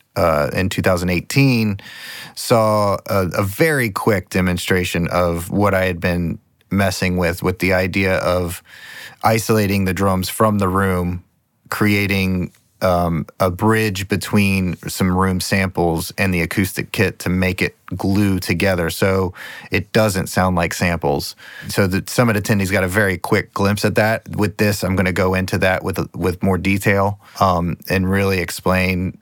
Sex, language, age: male, English, 30-49